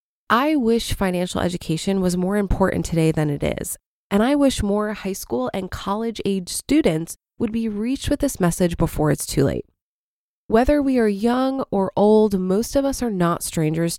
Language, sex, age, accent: English, female, 20-39, American